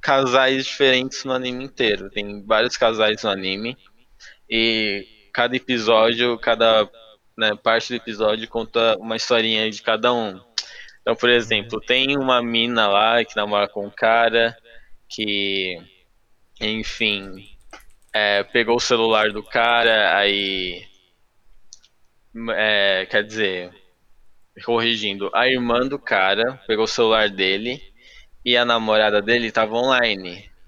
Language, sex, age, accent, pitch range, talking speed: Portuguese, male, 10-29, Brazilian, 105-120 Hz, 125 wpm